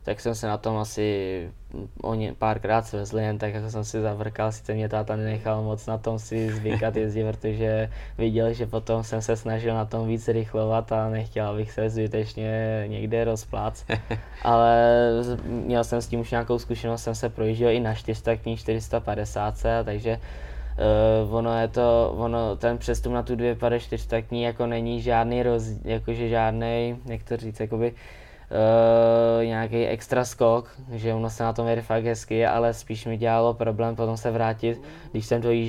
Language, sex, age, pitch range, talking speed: Czech, male, 20-39, 110-115 Hz, 170 wpm